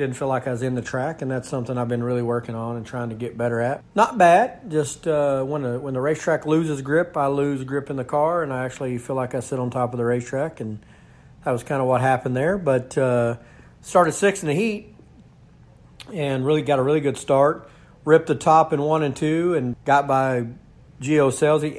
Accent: American